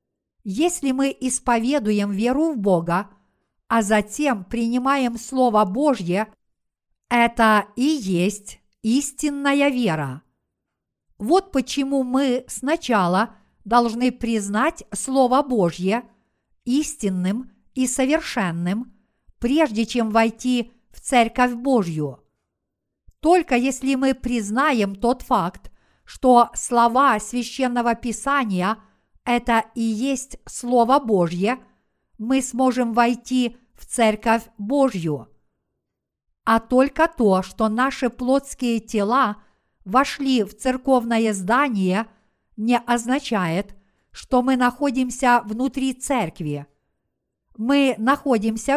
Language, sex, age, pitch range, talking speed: Russian, female, 50-69, 215-265 Hz, 90 wpm